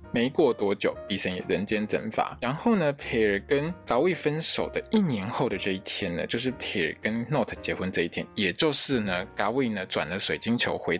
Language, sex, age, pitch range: Chinese, male, 20-39, 105-150 Hz